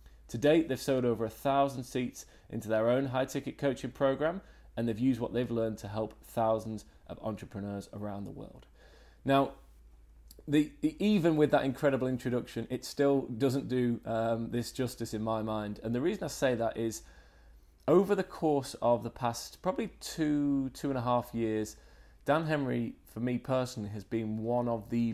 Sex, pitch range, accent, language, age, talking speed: male, 105-125 Hz, British, English, 20-39, 175 wpm